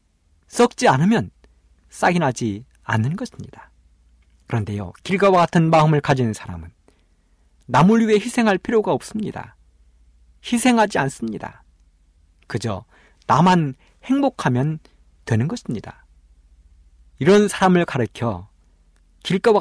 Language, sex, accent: Korean, male, native